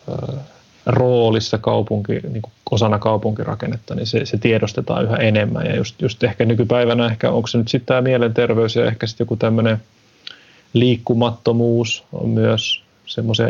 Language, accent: Finnish, native